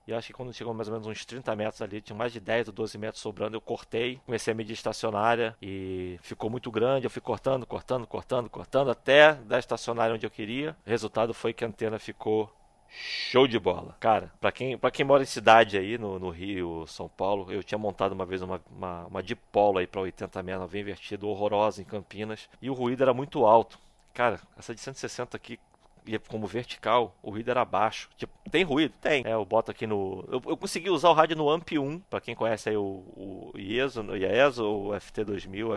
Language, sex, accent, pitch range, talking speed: Portuguese, male, Brazilian, 105-130 Hz, 220 wpm